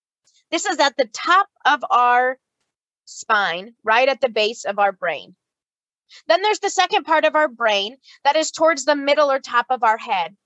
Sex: female